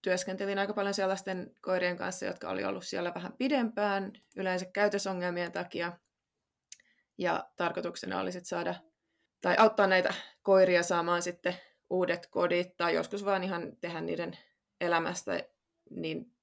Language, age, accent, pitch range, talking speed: Finnish, 20-39, native, 175-200 Hz, 130 wpm